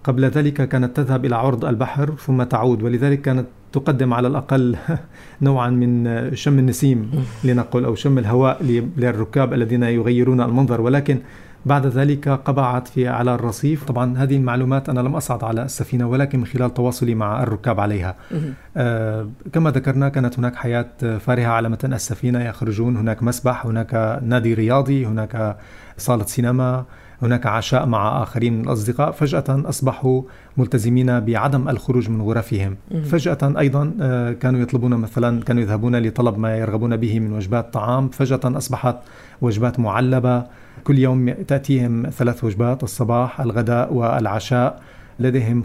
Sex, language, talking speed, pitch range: male, Arabic, 140 wpm, 120-135 Hz